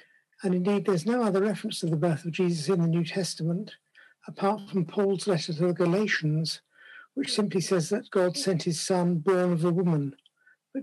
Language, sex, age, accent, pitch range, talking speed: Dutch, male, 60-79, British, 170-200 Hz, 195 wpm